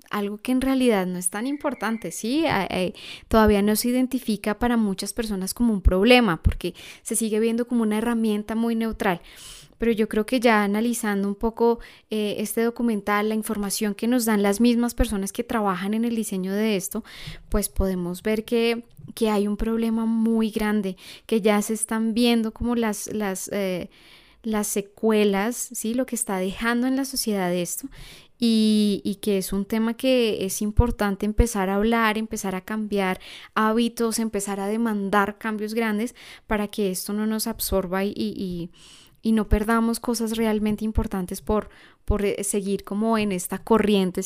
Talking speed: 170 wpm